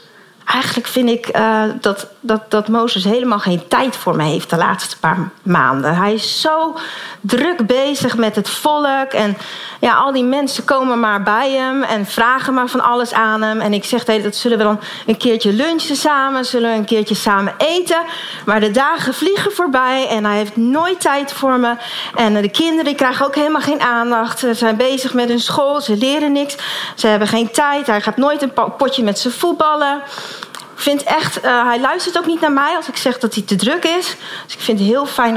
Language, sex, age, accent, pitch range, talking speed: Dutch, female, 40-59, Dutch, 205-275 Hz, 210 wpm